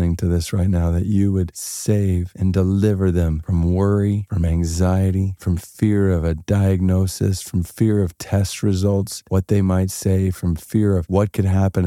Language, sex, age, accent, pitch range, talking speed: English, male, 40-59, American, 90-120 Hz, 175 wpm